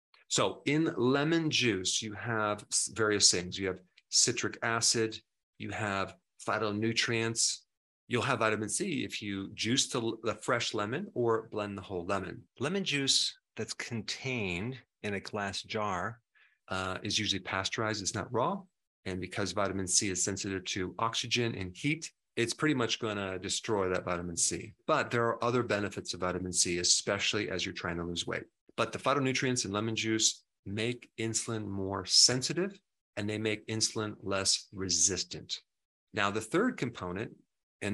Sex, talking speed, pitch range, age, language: male, 155 wpm, 95-115 Hz, 40-59, English